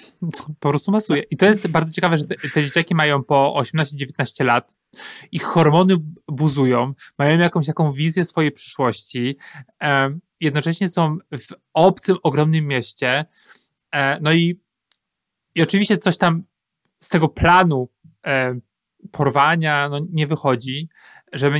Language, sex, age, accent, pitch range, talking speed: Polish, male, 30-49, native, 140-170 Hz, 115 wpm